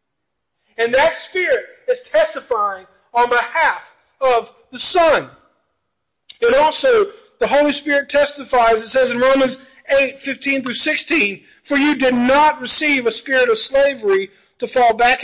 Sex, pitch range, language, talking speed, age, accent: male, 200-280 Hz, English, 140 wpm, 40-59, American